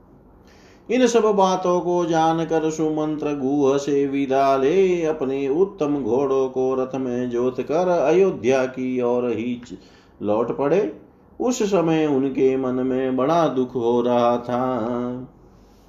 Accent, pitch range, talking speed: native, 130-150 Hz, 120 wpm